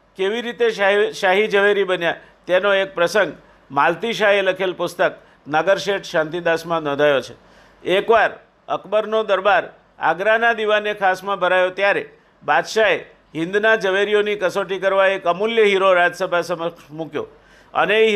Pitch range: 165-200 Hz